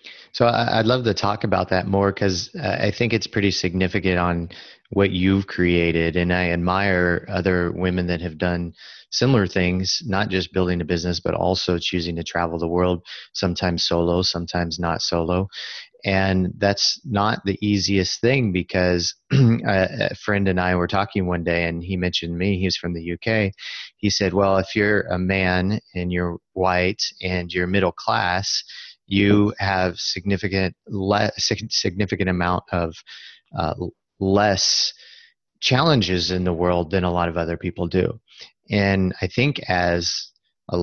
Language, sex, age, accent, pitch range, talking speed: English, male, 30-49, American, 90-100 Hz, 160 wpm